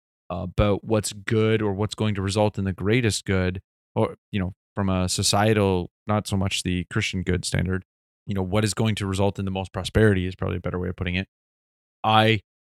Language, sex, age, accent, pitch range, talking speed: English, male, 20-39, American, 95-120 Hz, 215 wpm